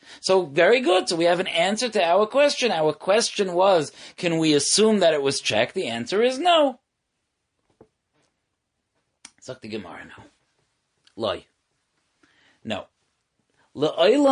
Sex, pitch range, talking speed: male, 125-205 Hz, 110 wpm